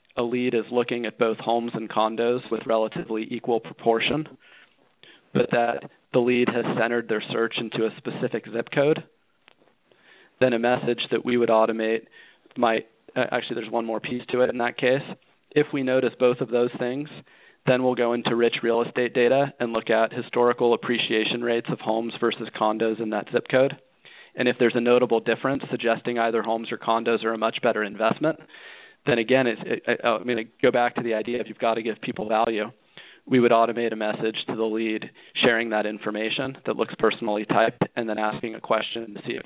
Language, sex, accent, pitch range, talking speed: English, male, American, 115-125 Hz, 200 wpm